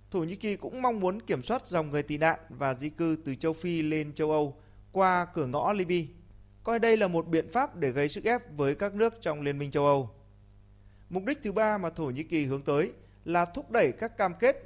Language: Vietnamese